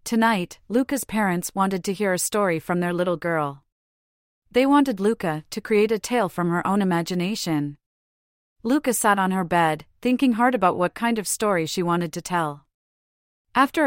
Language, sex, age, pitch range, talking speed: English, female, 30-49, 155-225 Hz, 175 wpm